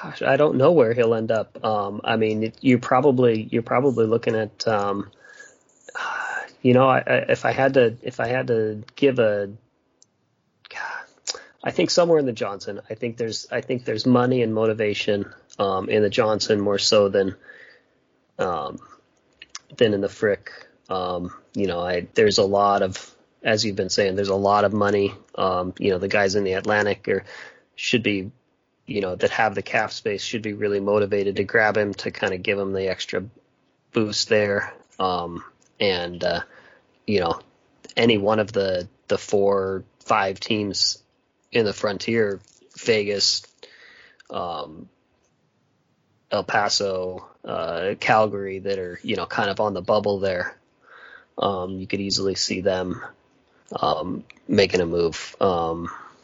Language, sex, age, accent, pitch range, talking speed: English, male, 30-49, American, 95-115 Hz, 165 wpm